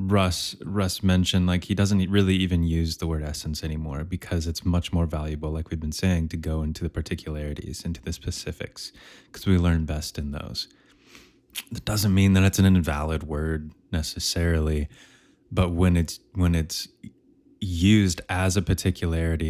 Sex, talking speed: male, 165 wpm